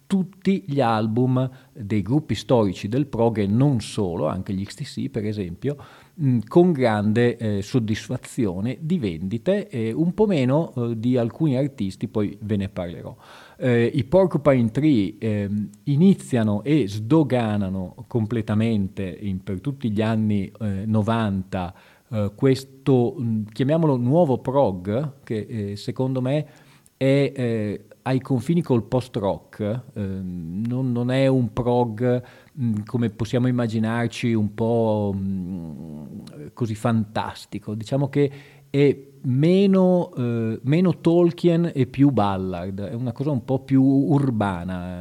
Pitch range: 105-135 Hz